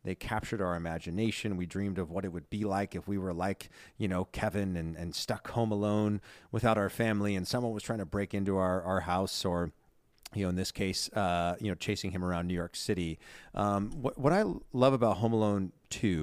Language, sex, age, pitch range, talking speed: English, male, 30-49, 90-110 Hz, 225 wpm